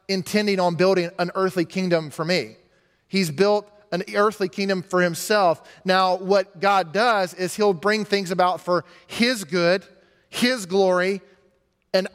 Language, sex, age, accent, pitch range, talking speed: English, male, 30-49, American, 180-210 Hz, 150 wpm